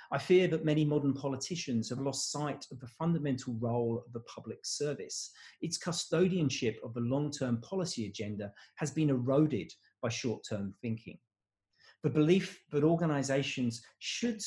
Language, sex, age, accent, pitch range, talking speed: English, male, 40-59, British, 115-155 Hz, 145 wpm